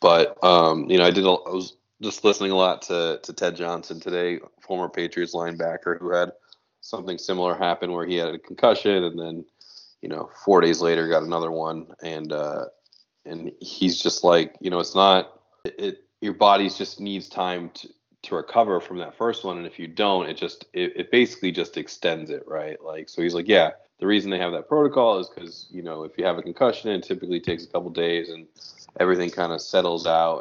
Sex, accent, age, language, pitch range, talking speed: male, American, 20-39, English, 85-95 Hz, 215 wpm